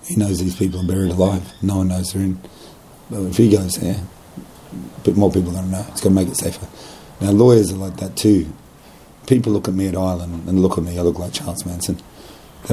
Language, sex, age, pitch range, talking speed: English, male, 30-49, 90-100 Hz, 230 wpm